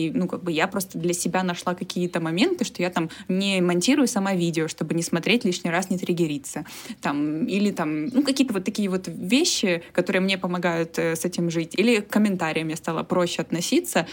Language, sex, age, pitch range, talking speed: Russian, female, 20-39, 170-195 Hz, 205 wpm